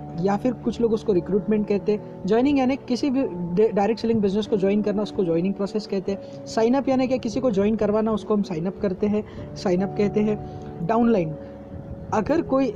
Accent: native